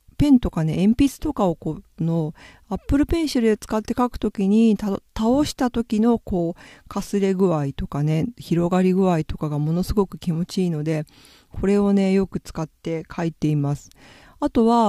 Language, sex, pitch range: Japanese, female, 165-235 Hz